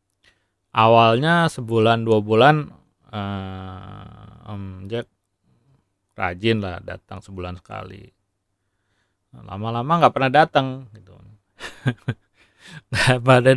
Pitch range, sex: 100-135 Hz, male